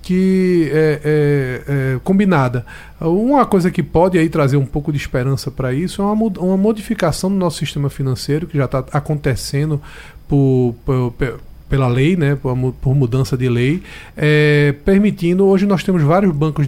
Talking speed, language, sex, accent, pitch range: 170 wpm, Portuguese, male, Brazilian, 140-190 Hz